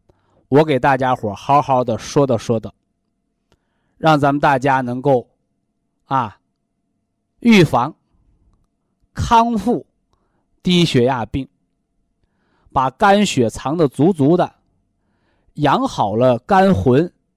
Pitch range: 125-185 Hz